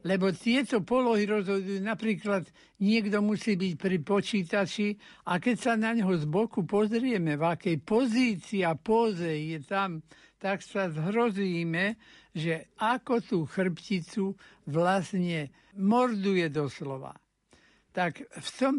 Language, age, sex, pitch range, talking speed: Slovak, 60-79, male, 170-210 Hz, 115 wpm